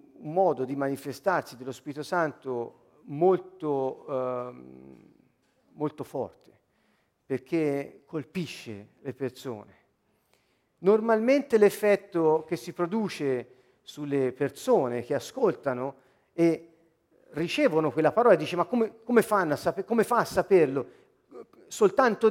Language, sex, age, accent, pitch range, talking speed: Italian, male, 50-69, native, 150-230 Hz, 110 wpm